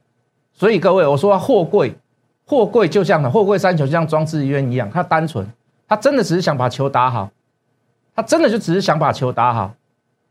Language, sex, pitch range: Chinese, male, 135-195 Hz